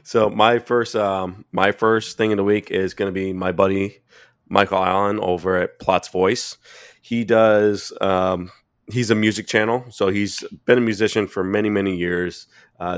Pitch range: 90-105 Hz